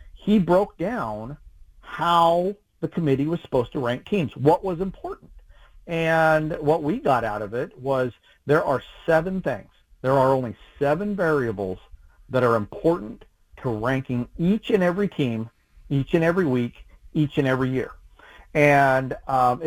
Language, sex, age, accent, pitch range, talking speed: English, male, 40-59, American, 125-180 Hz, 155 wpm